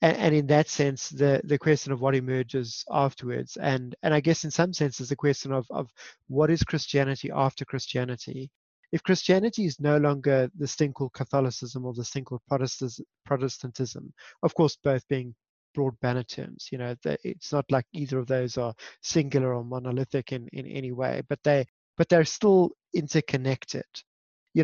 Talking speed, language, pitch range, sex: 180 wpm, English, 130-155 Hz, male